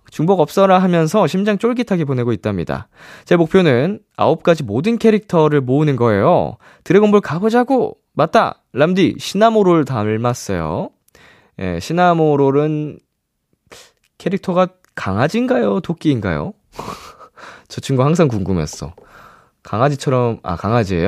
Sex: male